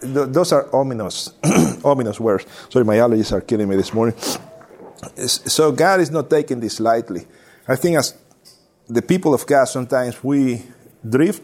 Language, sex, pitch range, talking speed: English, male, 115-145 Hz, 155 wpm